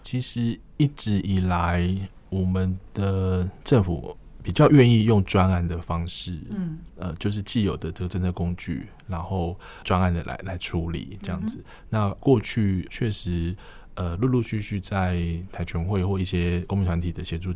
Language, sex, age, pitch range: Chinese, male, 20-39, 85-100 Hz